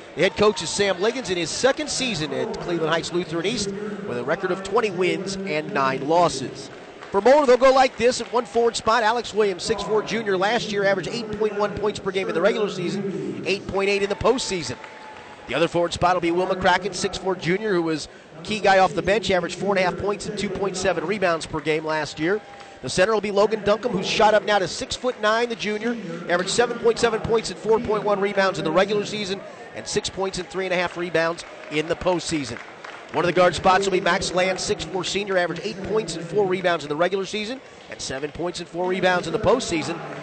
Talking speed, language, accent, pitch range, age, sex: 215 wpm, English, American, 175-210 Hz, 30-49, male